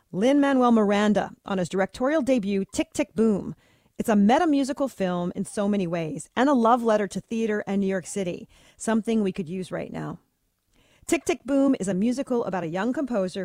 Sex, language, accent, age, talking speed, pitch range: female, English, American, 40-59, 195 wpm, 185-240 Hz